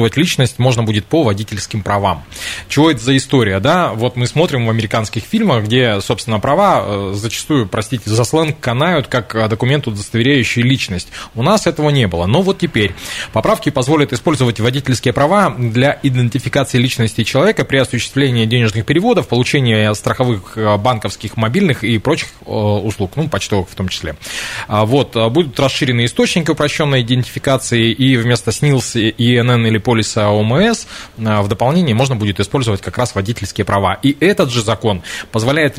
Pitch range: 110-140 Hz